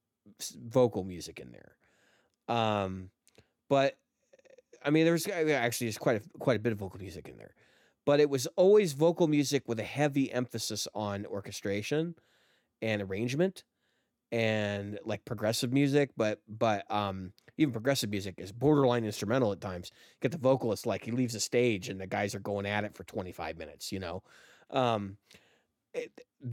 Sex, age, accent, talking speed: male, 30-49, American, 170 wpm